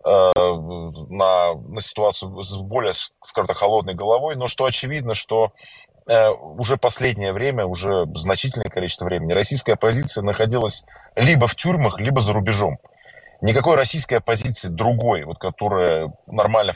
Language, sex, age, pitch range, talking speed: Russian, male, 20-39, 100-130 Hz, 130 wpm